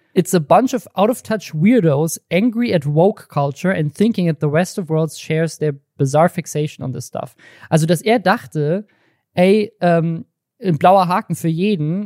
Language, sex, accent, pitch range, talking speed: German, male, German, 150-185 Hz, 185 wpm